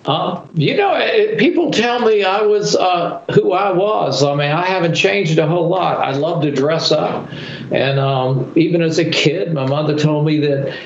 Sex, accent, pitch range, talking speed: male, American, 135-165 Hz, 205 wpm